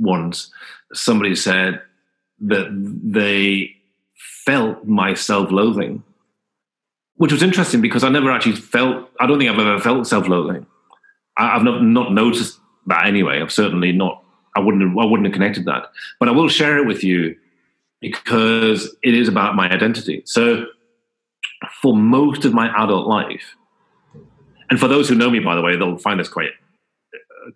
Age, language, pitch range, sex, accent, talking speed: 40-59, English, 95-130 Hz, male, British, 155 wpm